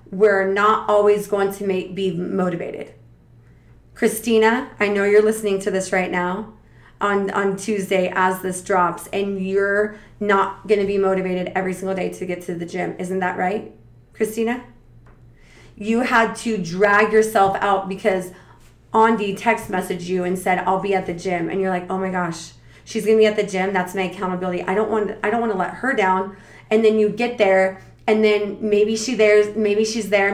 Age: 30-49